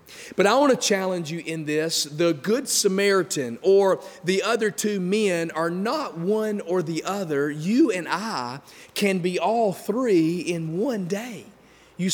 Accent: American